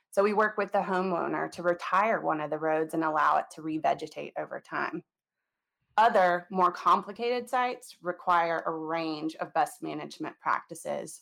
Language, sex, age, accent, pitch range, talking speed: English, female, 30-49, American, 165-200 Hz, 160 wpm